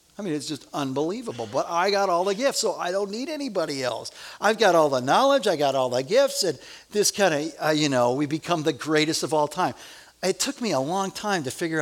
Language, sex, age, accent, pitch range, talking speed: English, male, 50-69, American, 165-220 Hz, 245 wpm